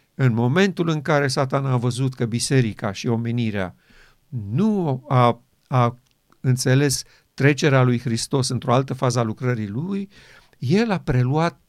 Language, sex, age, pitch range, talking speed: Romanian, male, 50-69, 120-155 Hz, 140 wpm